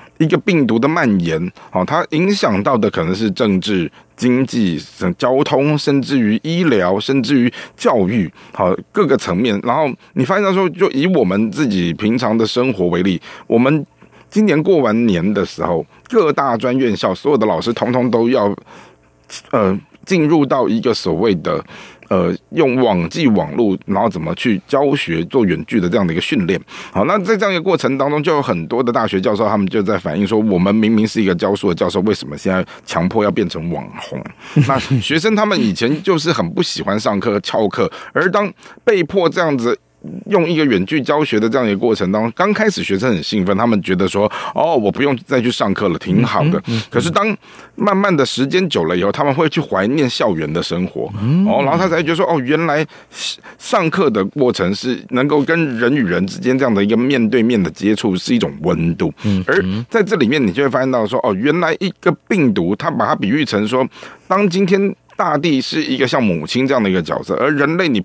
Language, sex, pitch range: Chinese, male, 110-175 Hz